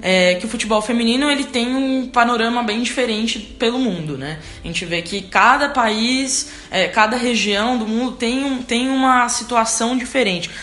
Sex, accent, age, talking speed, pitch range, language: female, Brazilian, 20-39, 175 wpm, 195-245 Hz, Portuguese